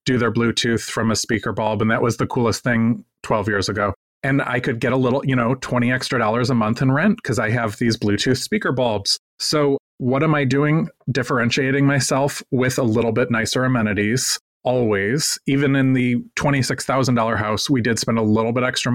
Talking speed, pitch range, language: 205 wpm, 115-130 Hz, English